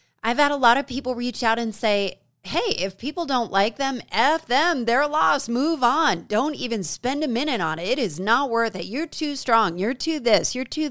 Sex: female